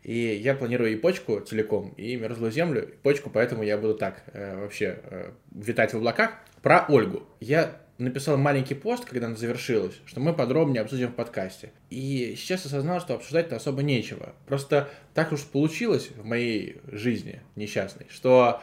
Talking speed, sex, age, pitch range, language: 170 wpm, male, 20-39, 110-140 Hz, Russian